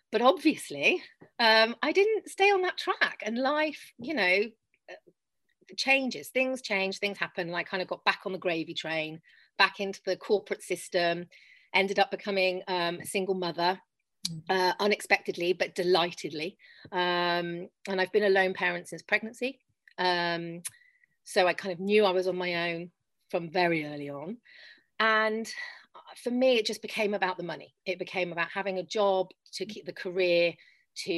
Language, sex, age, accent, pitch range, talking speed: English, female, 30-49, British, 175-225 Hz, 165 wpm